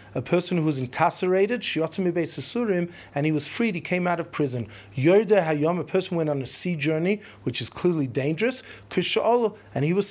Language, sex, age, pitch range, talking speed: English, male, 40-59, 145-210 Hz, 165 wpm